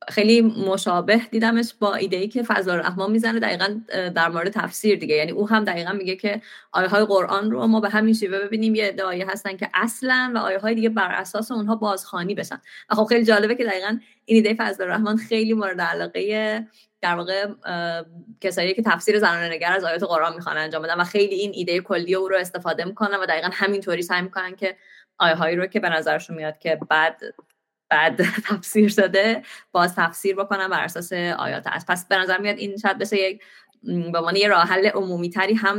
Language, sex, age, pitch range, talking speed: Persian, female, 20-39, 175-215 Hz, 200 wpm